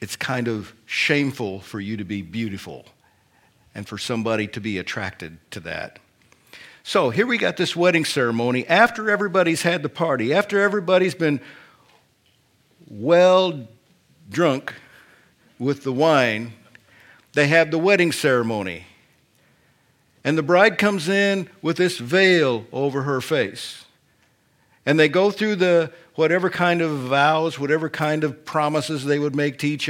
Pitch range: 125-180 Hz